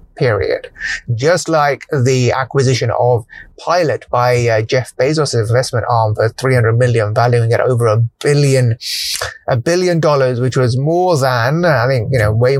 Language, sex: English, male